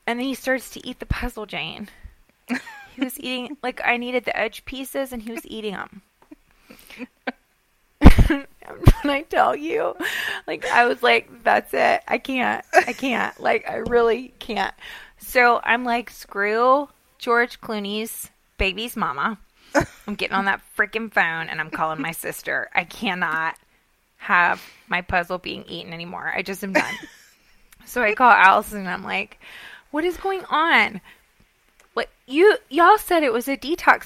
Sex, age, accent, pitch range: female, 20-39, American, 230-300 Hz